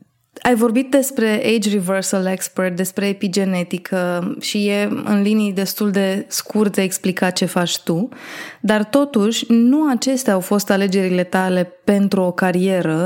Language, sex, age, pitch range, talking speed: Romanian, female, 20-39, 185-215 Hz, 145 wpm